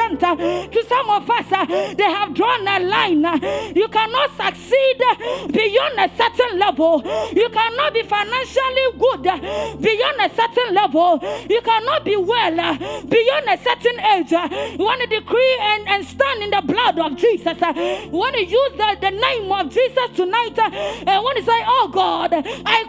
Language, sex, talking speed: English, female, 155 wpm